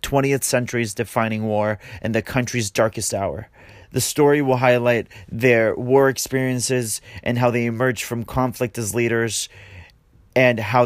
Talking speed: 145 wpm